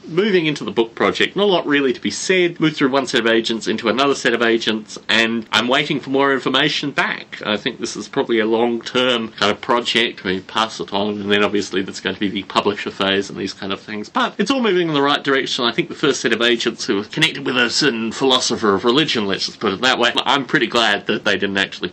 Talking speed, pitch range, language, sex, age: 265 wpm, 105-140 Hz, English, male, 30-49